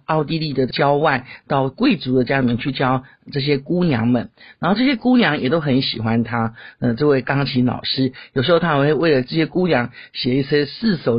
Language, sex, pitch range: Chinese, male, 125-165 Hz